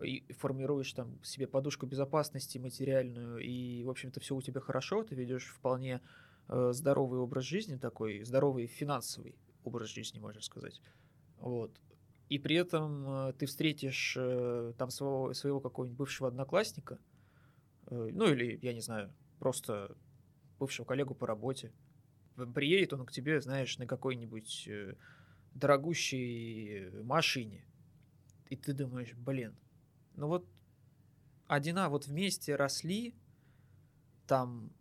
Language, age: Russian, 20-39